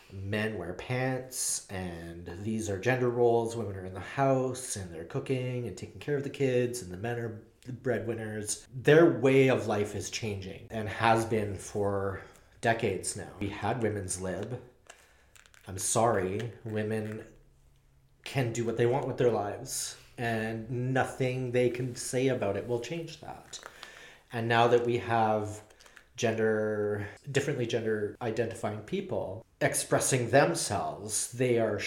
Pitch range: 100-120 Hz